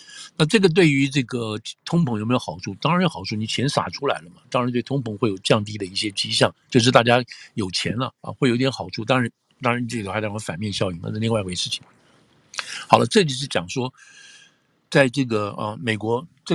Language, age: Chinese, 50-69